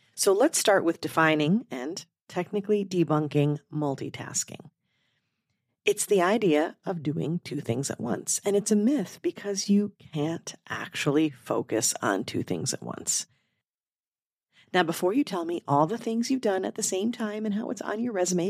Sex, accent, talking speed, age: female, American, 170 wpm, 40-59